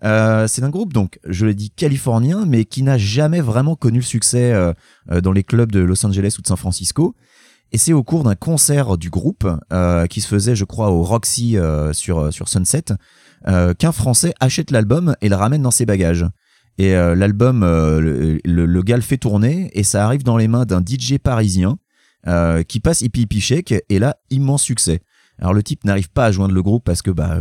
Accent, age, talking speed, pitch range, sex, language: French, 30-49, 220 wpm, 90-120 Hz, male, French